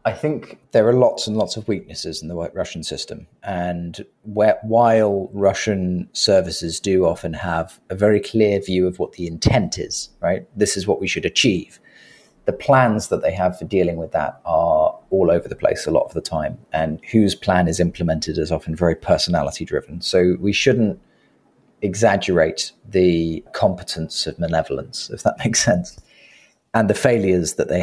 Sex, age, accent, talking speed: male, 30-49, British, 175 wpm